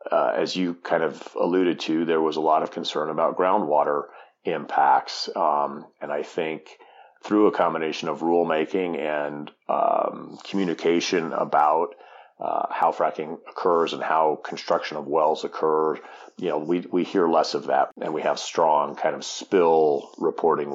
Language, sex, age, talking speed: English, male, 40-59, 160 wpm